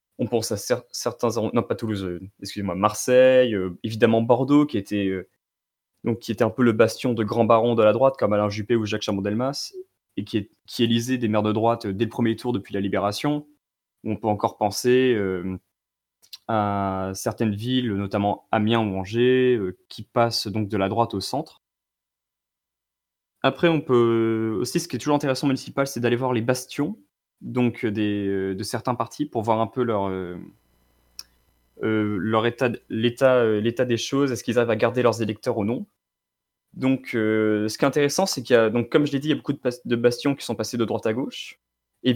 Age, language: 20-39, French